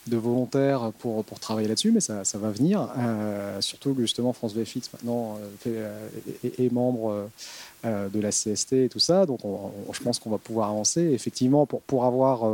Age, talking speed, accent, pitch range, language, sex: 30-49, 195 wpm, French, 115-140 Hz, French, male